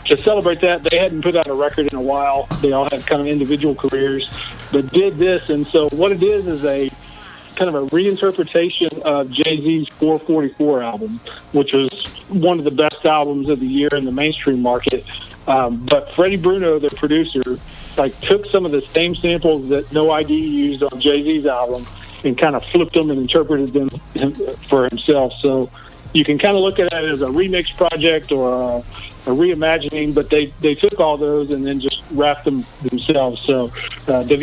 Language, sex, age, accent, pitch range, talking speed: English, male, 50-69, American, 135-160 Hz, 195 wpm